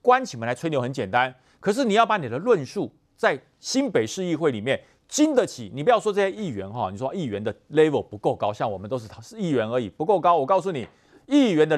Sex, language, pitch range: male, Chinese, 125-205 Hz